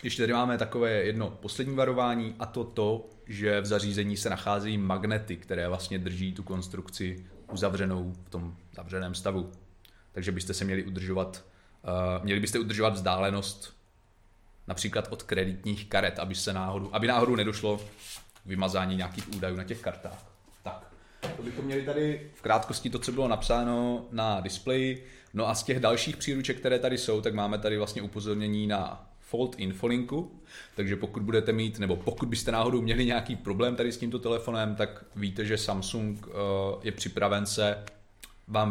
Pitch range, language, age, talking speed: 95-120 Hz, Czech, 30-49, 160 wpm